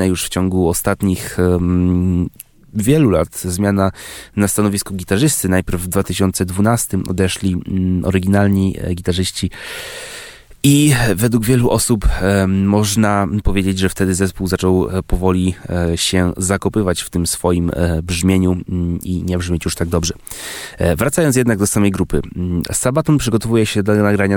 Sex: male